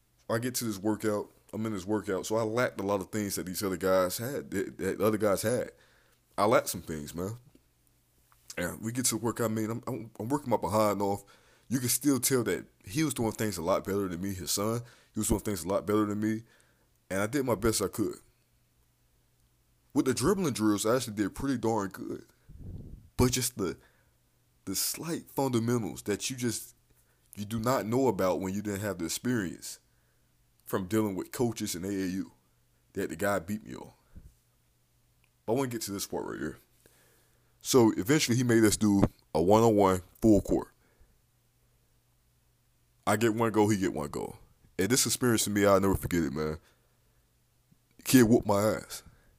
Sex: male